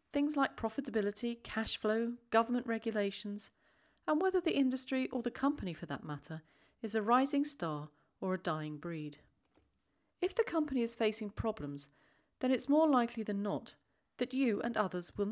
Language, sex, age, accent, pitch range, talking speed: English, female, 40-59, British, 155-255 Hz, 165 wpm